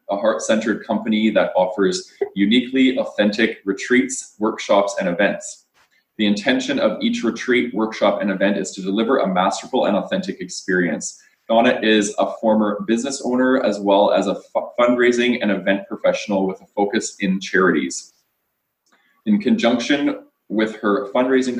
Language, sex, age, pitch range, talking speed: English, male, 20-39, 95-120 Hz, 140 wpm